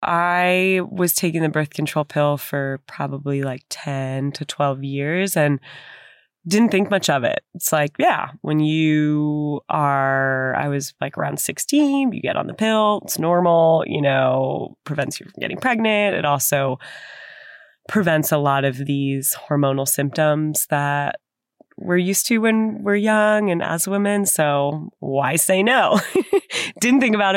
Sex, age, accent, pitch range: female, 20-39, American, 145-185 Hz